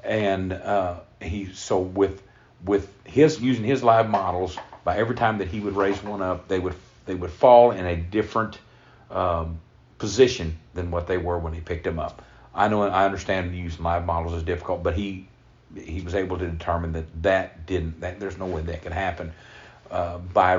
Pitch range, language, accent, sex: 85-105 Hz, English, American, male